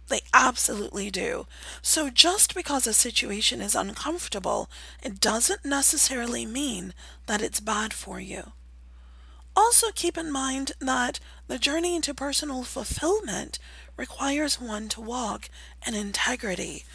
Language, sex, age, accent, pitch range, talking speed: English, female, 30-49, American, 200-285 Hz, 125 wpm